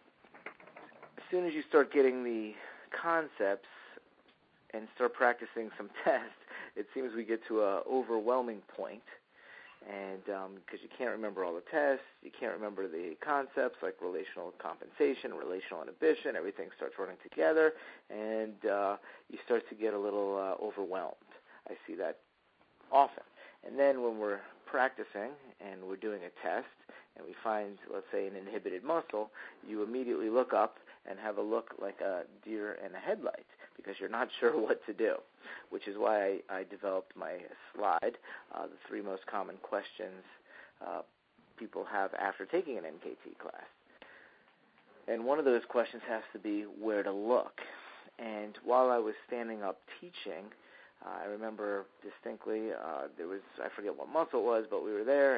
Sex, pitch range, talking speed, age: male, 105-165 Hz, 165 wpm, 50-69